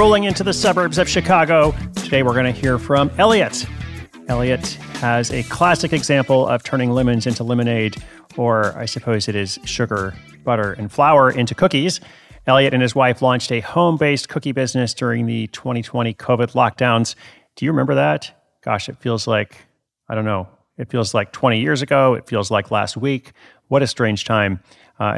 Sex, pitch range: male, 110-135 Hz